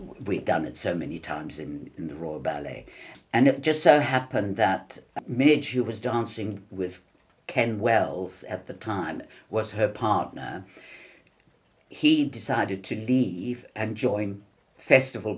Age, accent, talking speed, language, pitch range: 50-69, British, 145 wpm, English, 95-125 Hz